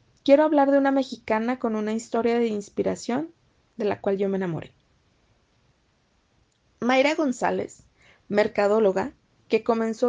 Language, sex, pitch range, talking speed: Spanish, female, 215-255 Hz, 125 wpm